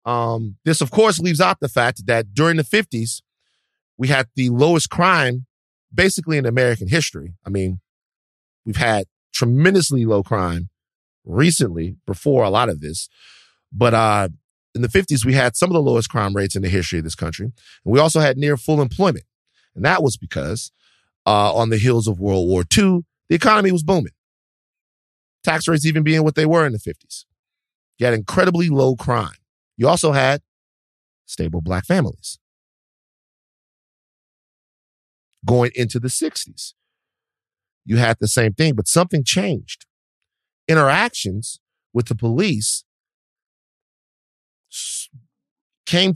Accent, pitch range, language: American, 100-155 Hz, English